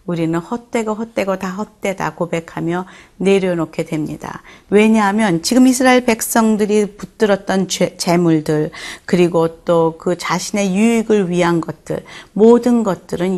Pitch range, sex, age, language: 175-225 Hz, female, 40-59, Korean